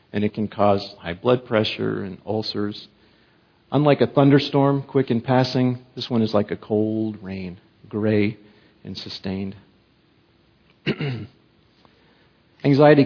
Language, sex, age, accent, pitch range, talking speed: English, male, 40-59, American, 110-135 Hz, 120 wpm